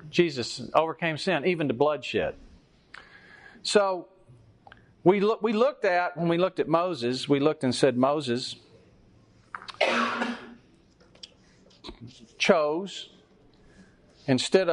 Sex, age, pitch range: male, 40-59, 120-165 Hz